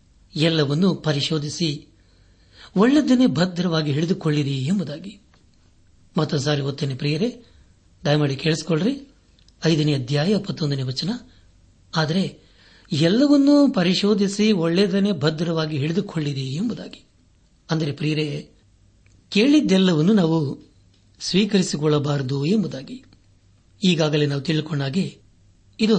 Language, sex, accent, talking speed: Kannada, male, native, 70 wpm